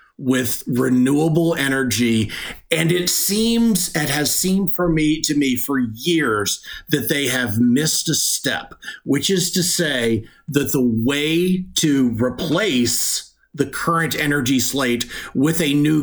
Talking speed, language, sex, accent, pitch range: 140 wpm, English, male, American, 125-160 Hz